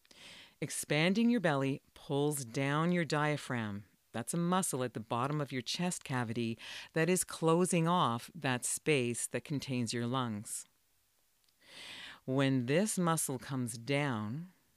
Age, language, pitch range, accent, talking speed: 50-69, English, 120-165 Hz, American, 130 wpm